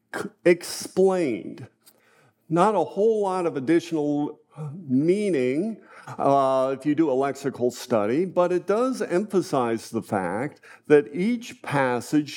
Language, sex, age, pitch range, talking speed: English, male, 50-69, 140-180 Hz, 115 wpm